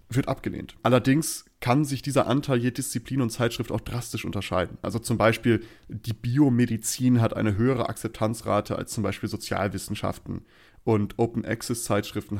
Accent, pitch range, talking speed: German, 100-125 Hz, 145 wpm